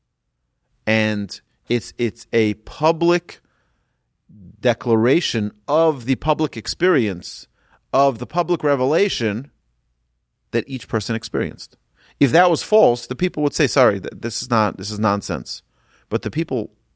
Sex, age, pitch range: male, 40-59, 85-120 Hz